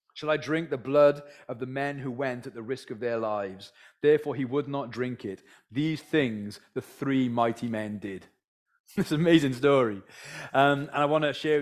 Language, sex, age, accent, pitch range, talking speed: English, male, 30-49, British, 125-155 Hz, 200 wpm